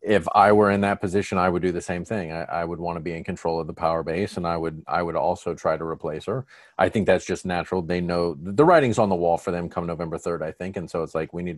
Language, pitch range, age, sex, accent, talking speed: English, 85-110 Hz, 40-59, male, American, 305 wpm